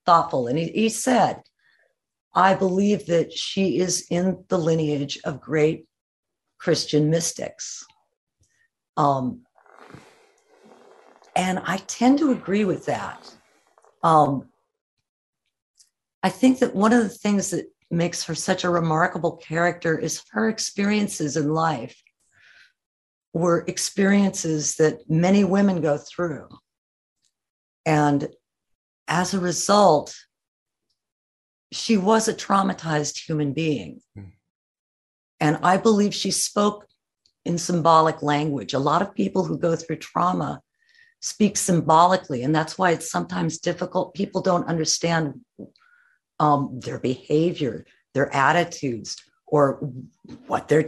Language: English